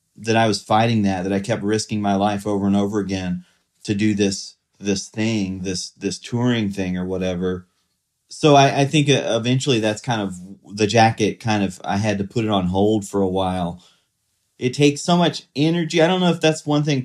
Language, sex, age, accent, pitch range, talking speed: English, male, 30-49, American, 105-140 Hz, 210 wpm